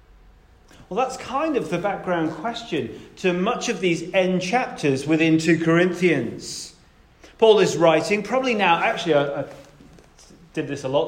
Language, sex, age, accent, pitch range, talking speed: English, male, 30-49, British, 145-195 Hz, 150 wpm